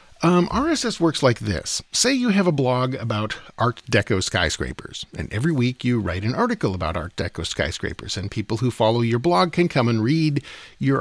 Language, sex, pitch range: English, male, 95-135 Hz